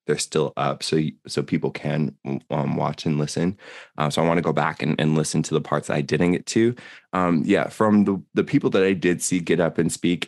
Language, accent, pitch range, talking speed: English, American, 75-85 Hz, 240 wpm